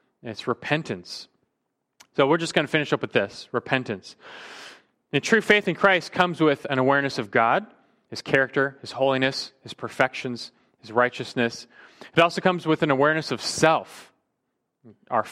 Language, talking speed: English, 155 wpm